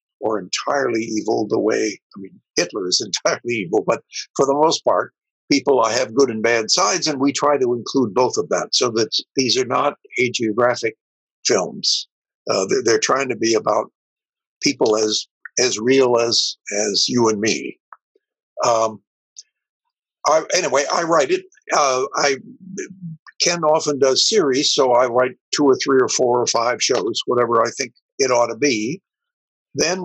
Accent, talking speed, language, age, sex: American, 170 wpm, English, 60-79, male